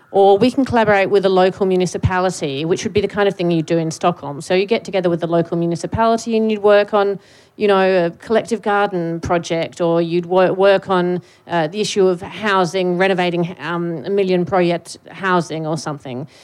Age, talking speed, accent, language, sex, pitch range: 30-49, 195 wpm, Australian, English, female, 175-210 Hz